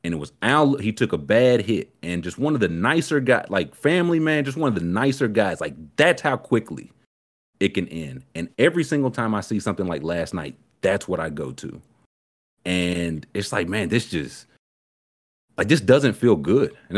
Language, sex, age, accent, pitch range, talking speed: English, male, 30-49, American, 90-150 Hz, 210 wpm